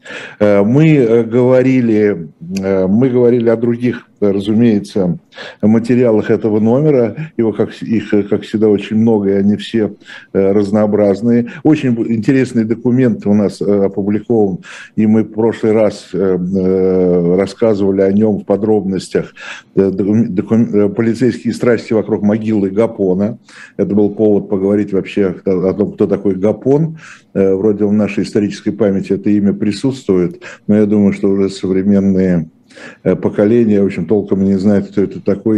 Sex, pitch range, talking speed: male, 100-120 Hz, 120 wpm